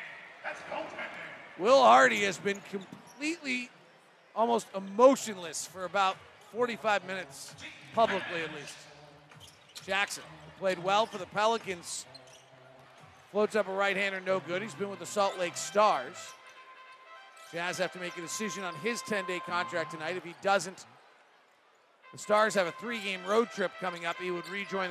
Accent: American